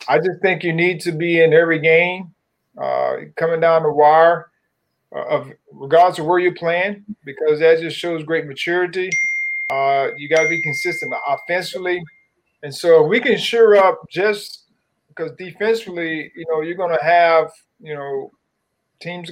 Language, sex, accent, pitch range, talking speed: English, male, American, 150-190 Hz, 165 wpm